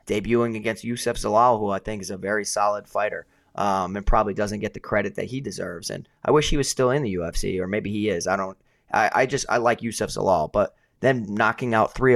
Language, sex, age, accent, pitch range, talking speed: English, male, 20-39, American, 105-120 Hz, 240 wpm